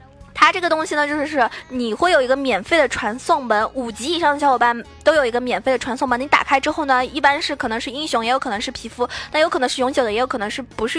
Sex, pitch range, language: female, 240-300 Hz, Chinese